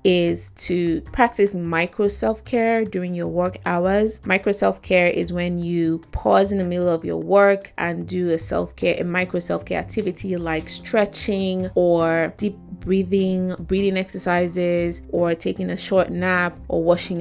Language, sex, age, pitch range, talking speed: English, female, 20-39, 165-195 Hz, 150 wpm